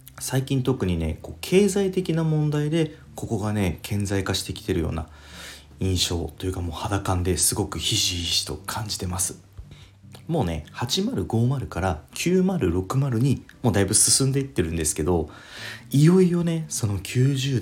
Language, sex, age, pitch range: Japanese, male, 30-49, 90-135 Hz